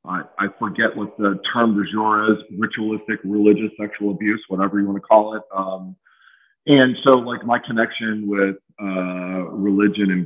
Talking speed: 150 wpm